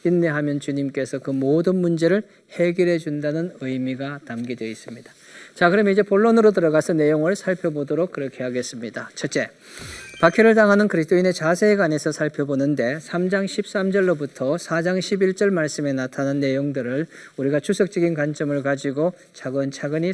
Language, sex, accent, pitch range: Korean, male, native, 140-185 Hz